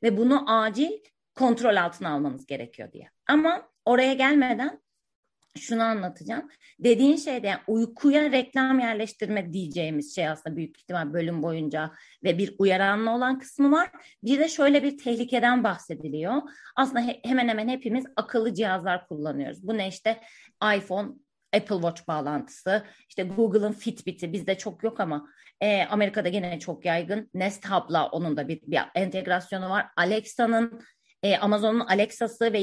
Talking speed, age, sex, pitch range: 140 wpm, 30-49, female, 190-255 Hz